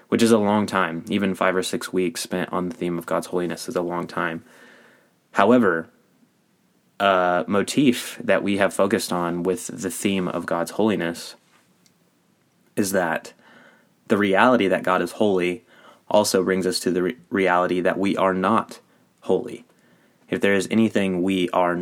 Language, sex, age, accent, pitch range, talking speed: English, male, 20-39, American, 90-95 Hz, 165 wpm